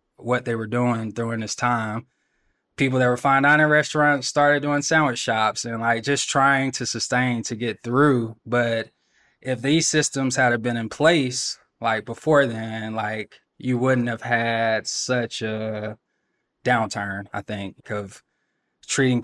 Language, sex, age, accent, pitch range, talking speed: English, male, 20-39, American, 110-125 Hz, 155 wpm